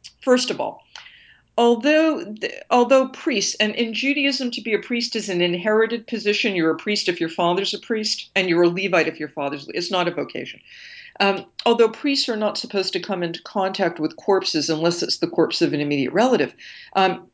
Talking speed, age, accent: 200 wpm, 50-69, American